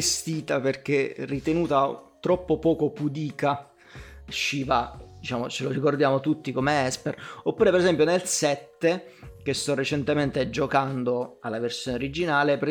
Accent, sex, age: native, male, 30-49